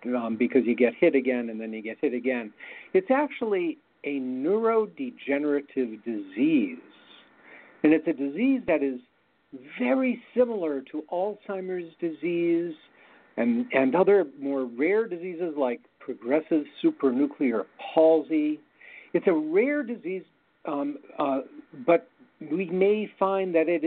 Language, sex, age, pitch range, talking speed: English, male, 50-69, 130-210 Hz, 125 wpm